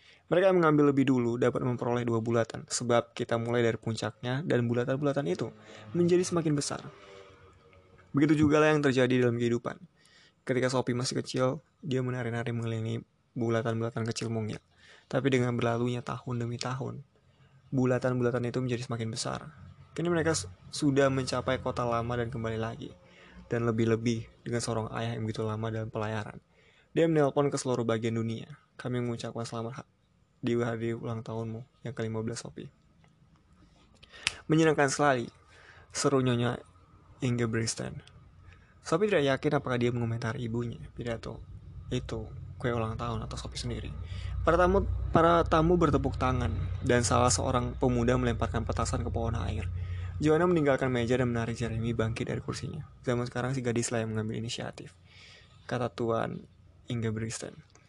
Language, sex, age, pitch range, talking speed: Indonesian, male, 20-39, 115-135 Hz, 145 wpm